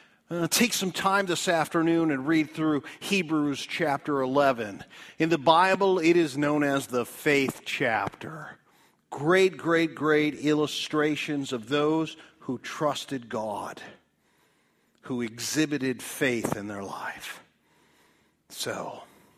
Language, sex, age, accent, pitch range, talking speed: English, male, 50-69, American, 125-160 Hz, 120 wpm